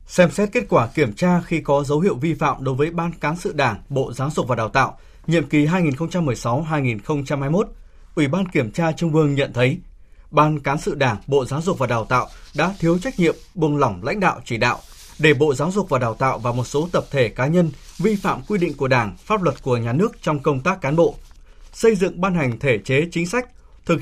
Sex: male